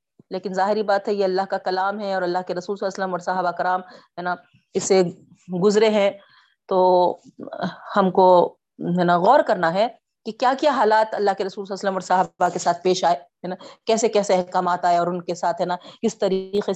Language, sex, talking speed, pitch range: Urdu, female, 210 wpm, 185-220 Hz